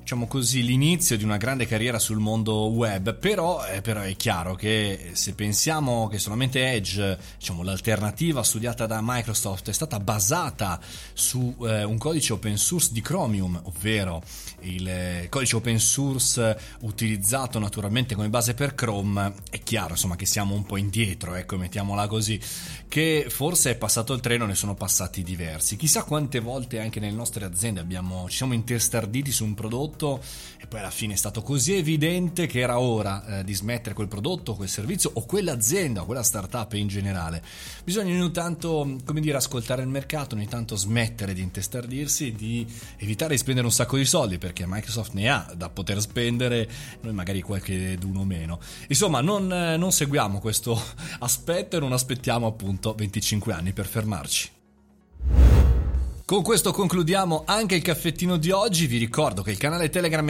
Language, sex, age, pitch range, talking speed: Italian, male, 30-49, 100-145 Hz, 170 wpm